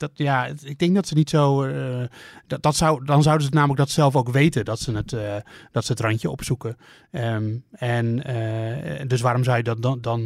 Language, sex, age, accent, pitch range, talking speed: Dutch, male, 30-49, Dutch, 115-140 Hz, 170 wpm